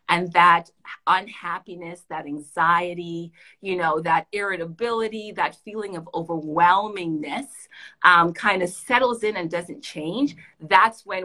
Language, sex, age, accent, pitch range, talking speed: English, female, 30-49, American, 170-220 Hz, 125 wpm